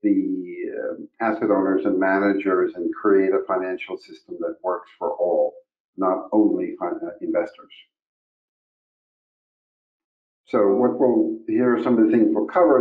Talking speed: 130 wpm